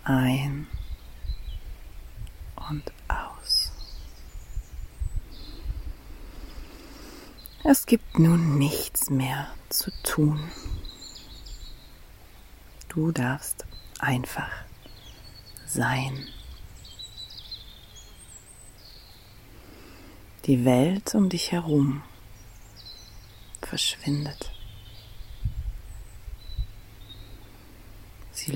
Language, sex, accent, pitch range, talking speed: German, female, German, 95-125 Hz, 45 wpm